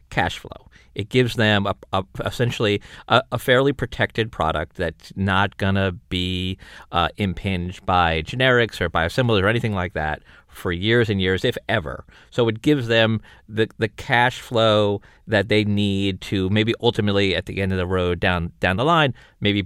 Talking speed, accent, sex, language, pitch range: 170 wpm, American, male, English, 90-120 Hz